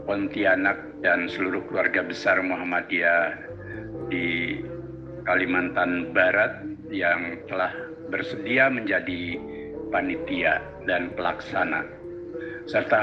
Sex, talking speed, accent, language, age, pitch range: male, 80 wpm, native, Indonesian, 50-69, 95-160 Hz